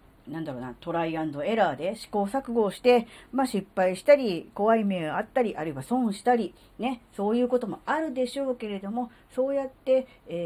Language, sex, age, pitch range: Japanese, female, 40-59, 170-245 Hz